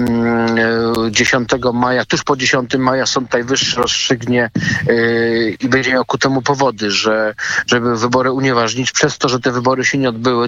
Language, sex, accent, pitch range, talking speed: Polish, male, native, 120-135 Hz, 150 wpm